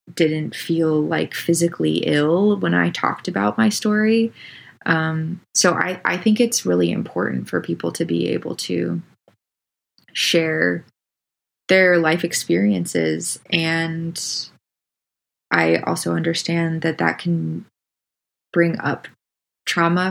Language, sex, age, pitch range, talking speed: English, female, 20-39, 155-180 Hz, 115 wpm